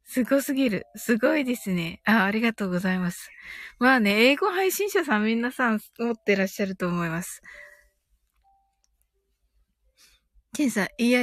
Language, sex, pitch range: Japanese, female, 190-270 Hz